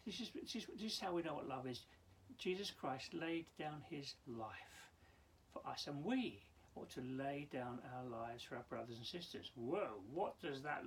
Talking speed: 205 wpm